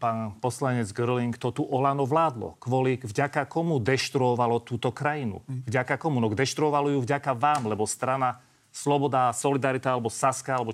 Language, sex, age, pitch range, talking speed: Slovak, male, 40-59, 125-150 Hz, 150 wpm